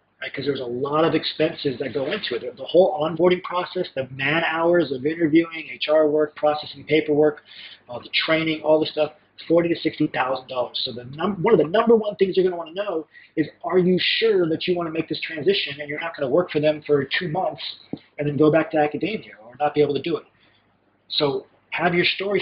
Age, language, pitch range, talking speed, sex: 40-59, English, 145-180 Hz, 230 wpm, male